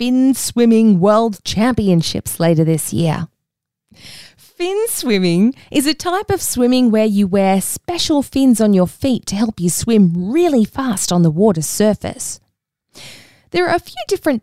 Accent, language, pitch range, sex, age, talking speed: Australian, English, 190-265 Hz, female, 20-39, 155 wpm